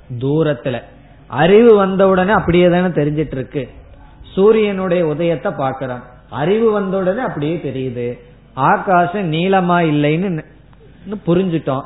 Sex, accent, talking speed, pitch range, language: male, native, 95 wpm, 130-170 Hz, Tamil